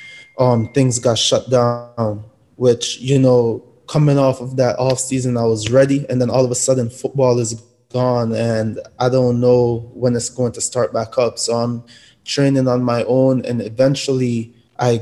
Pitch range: 120-130 Hz